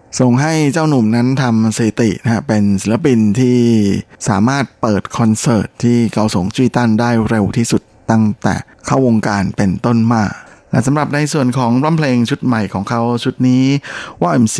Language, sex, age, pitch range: Thai, male, 20-39, 105-125 Hz